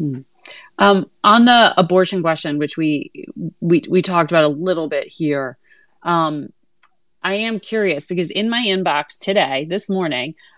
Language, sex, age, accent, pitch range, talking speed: English, female, 30-49, American, 150-185 Hz, 145 wpm